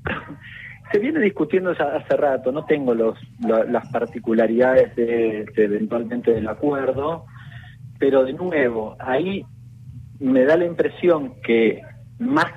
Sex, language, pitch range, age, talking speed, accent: male, Spanish, 120-160 Hz, 40-59, 130 wpm, Argentinian